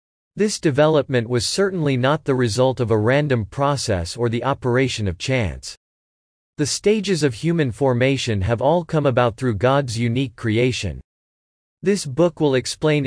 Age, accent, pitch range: 40-59, American, 115-150 Hz